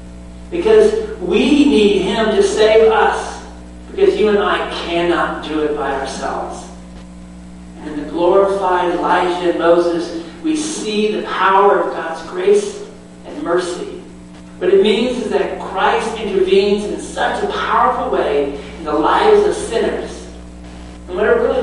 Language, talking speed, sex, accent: English, 145 wpm, male, American